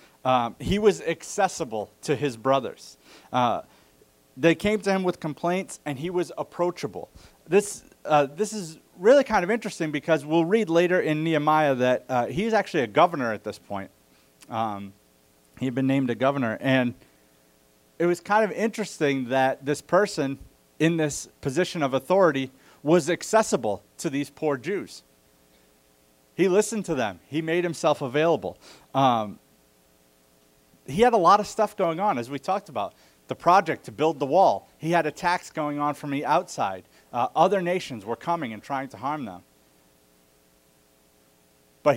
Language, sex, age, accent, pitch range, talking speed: English, male, 30-49, American, 105-180 Hz, 165 wpm